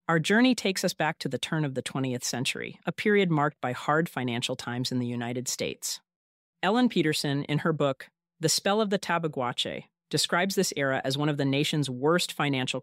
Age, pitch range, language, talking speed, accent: 40-59, 130-175 Hz, English, 200 wpm, American